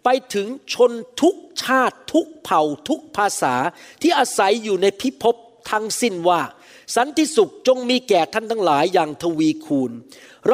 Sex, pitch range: male, 220-270 Hz